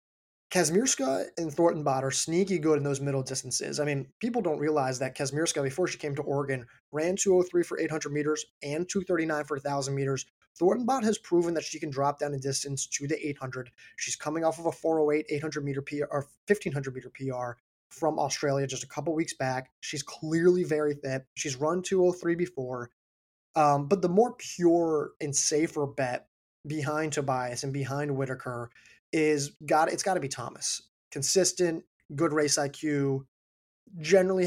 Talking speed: 170 wpm